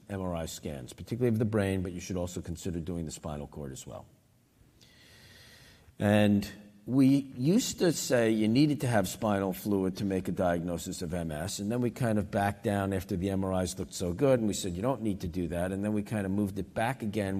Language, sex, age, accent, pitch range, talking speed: English, male, 50-69, American, 90-110 Hz, 225 wpm